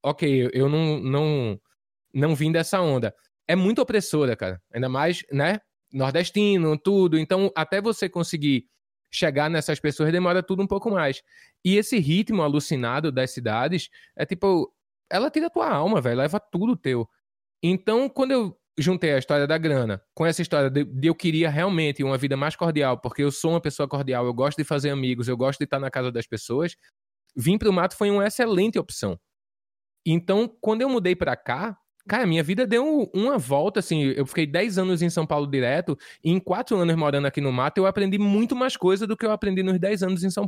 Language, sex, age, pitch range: Portuguese, male, 20-39, 140-195 Hz